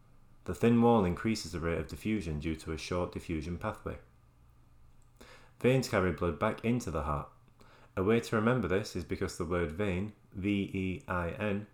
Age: 30-49